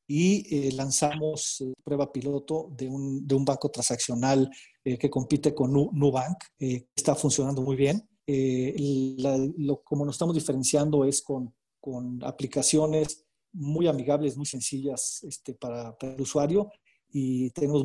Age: 40-59